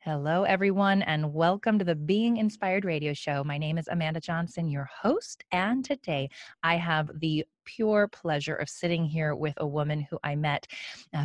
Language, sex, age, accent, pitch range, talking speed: English, female, 20-39, American, 155-200 Hz, 180 wpm